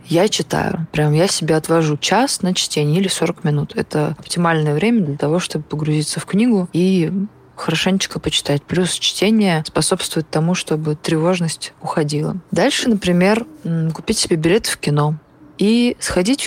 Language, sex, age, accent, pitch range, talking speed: Russian, female, 20-39, native, 155-190 Hz, 145 wpm